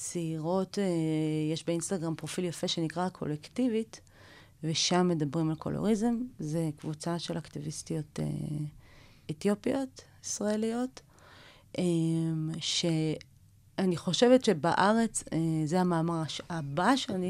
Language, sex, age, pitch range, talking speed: Hebrew, female, 30-49, 150-185 Hz, 95 wpm